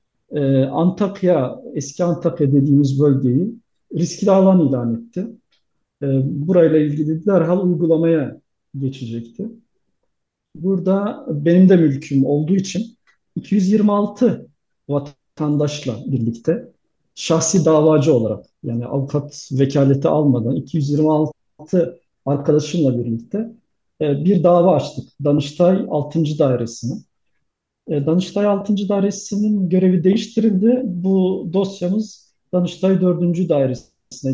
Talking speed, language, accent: 85 wpm, Turkish, native